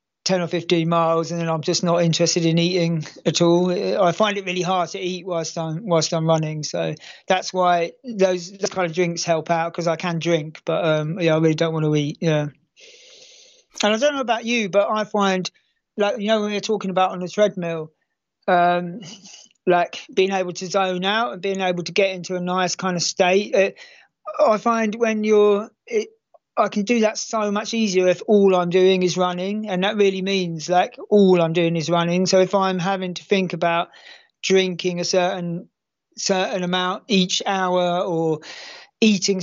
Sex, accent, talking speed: male, British, 200 wpm